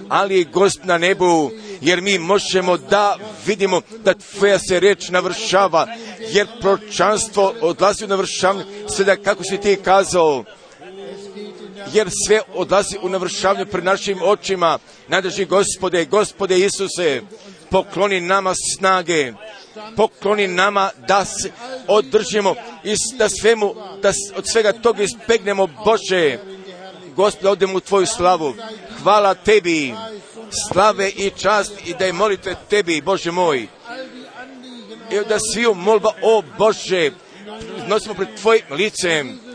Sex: male